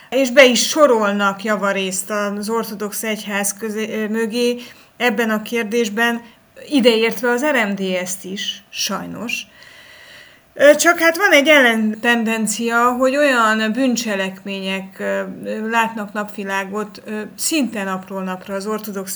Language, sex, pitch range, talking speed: Hungarian, female, 200-235 Hz, 105 wpm